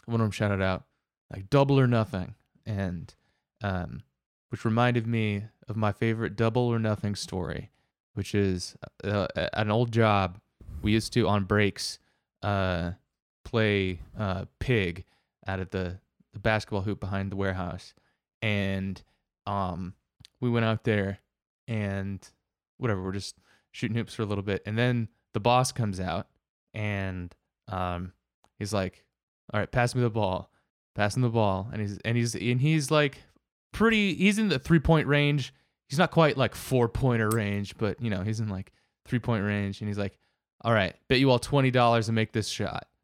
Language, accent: English, American